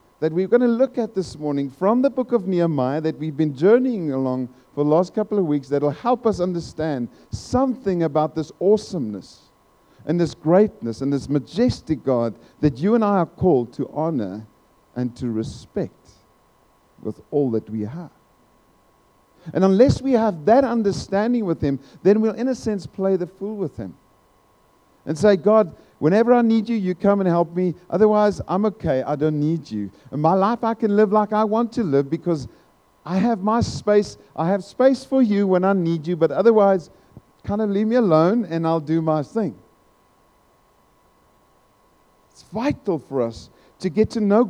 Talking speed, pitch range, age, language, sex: 185 wpm, 125-215 Hz, 50-69, English, male